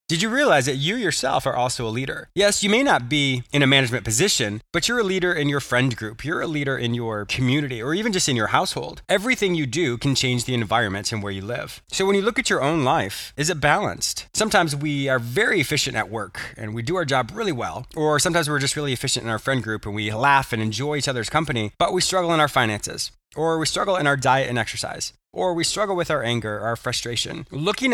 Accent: American